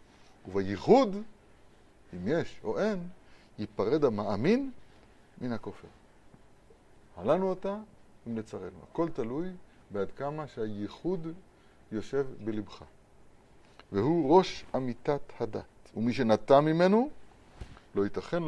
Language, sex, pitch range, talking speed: Hebrew, male, 100-155 Hz, 95 wpm